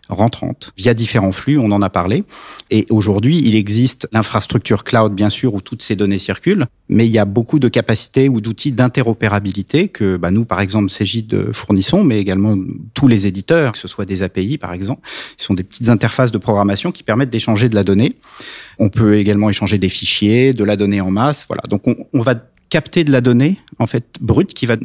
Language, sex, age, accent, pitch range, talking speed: French, male, 40-59, French, 105-130 Hz, 215 wpm